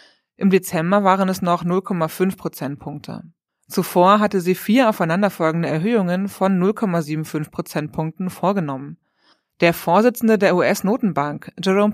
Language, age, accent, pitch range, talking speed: German, 20-39, German, 165-205 Hz, 110 wpm